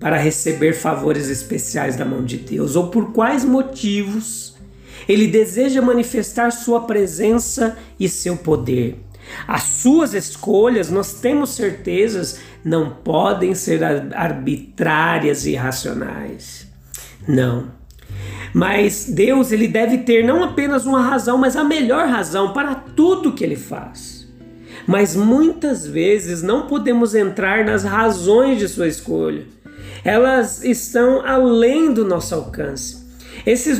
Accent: Brazilian